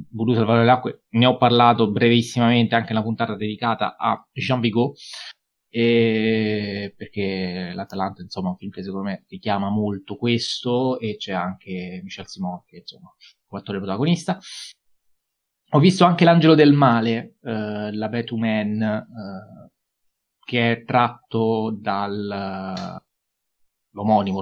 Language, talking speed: Italian, 130 wpm